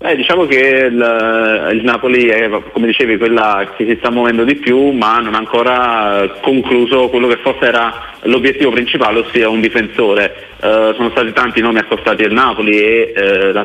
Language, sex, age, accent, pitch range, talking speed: Italian, male, 30-49, native, 105-120 Hz, 180 wpm